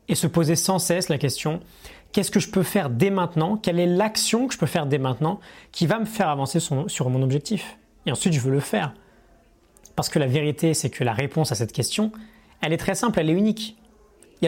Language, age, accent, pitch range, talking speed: French, 20-39, French, 135-190 Hz, 245 wpm